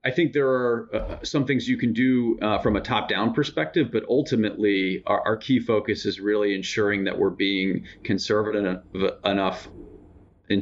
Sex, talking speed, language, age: male, 170 wpm, English, 40-59